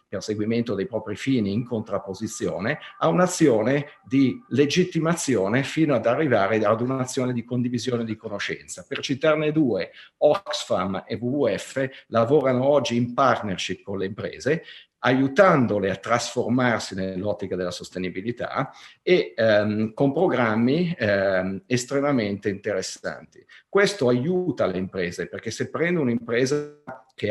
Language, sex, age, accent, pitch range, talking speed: Italian, male, 50-69, native, 100-130 Hz, 120 wpm